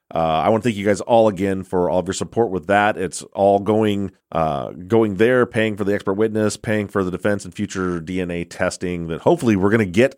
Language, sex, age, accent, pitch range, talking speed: English, male, 30-49, American, 85-110 Hz, 240 wpm